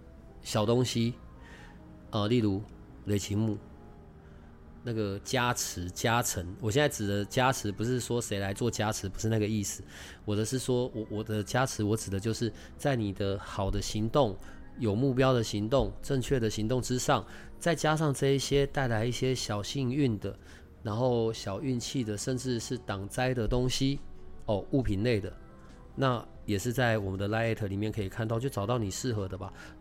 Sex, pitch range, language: male, 95-125 Hz, Chinese